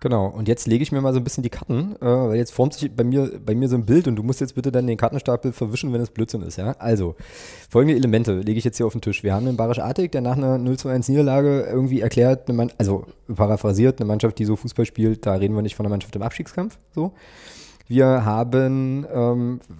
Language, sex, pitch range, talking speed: German, male, 110-135 Hz, 250 wpm